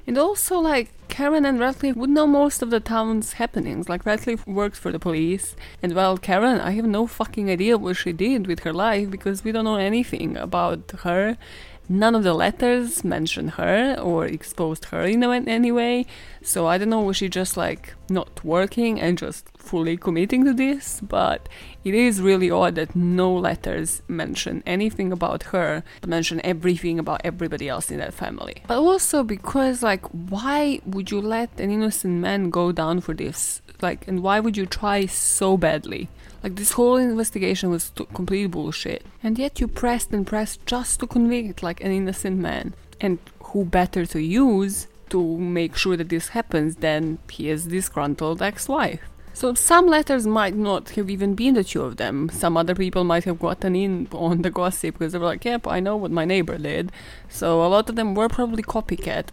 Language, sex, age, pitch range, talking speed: English, female, 20-39, 170-225 Hz, 190 wpm